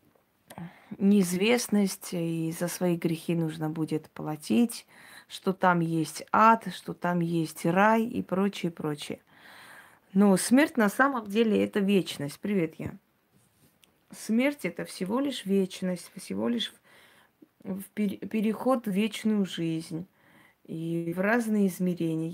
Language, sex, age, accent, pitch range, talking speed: Russian, female, 20-39, native, 170-210 Hz, 115 wpm